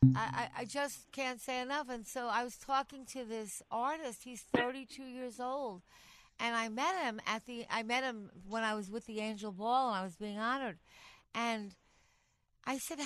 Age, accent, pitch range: 60-79, American, 220-260 Hz